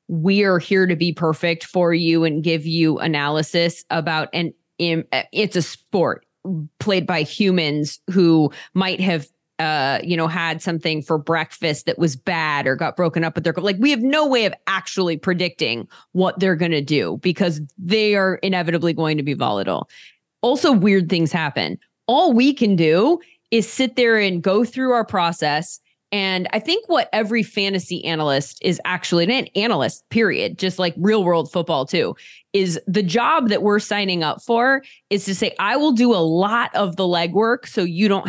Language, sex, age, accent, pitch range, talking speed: English, female, 20-39, American, 165-220 Hz, 180 wpm